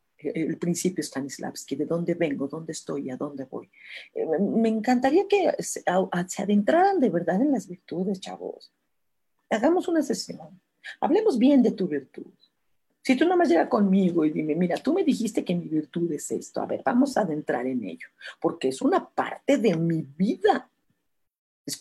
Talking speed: 170 wpm